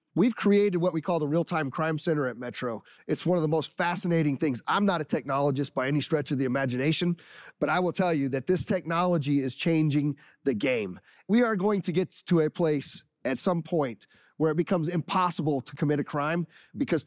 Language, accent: English, American